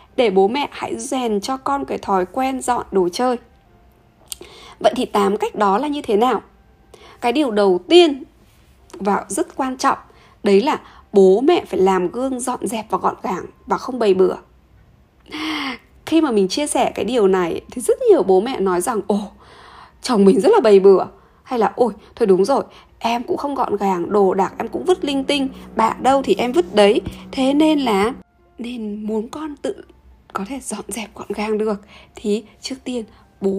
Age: 20-39